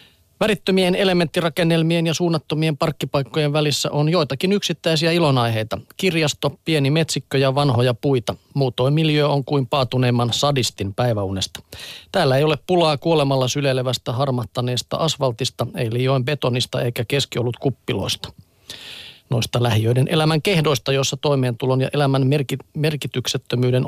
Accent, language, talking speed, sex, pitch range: native, Finnish, 115 wpm, male, 125-155 Hz